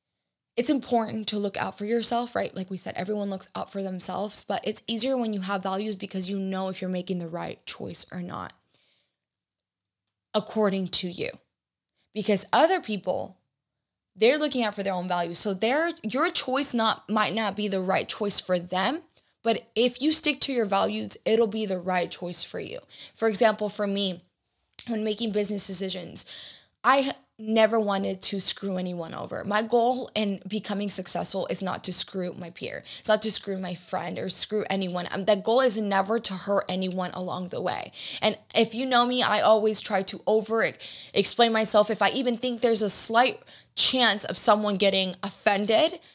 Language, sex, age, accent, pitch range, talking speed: English, female, 20-39, American, 190-230 Hz, 185 wpm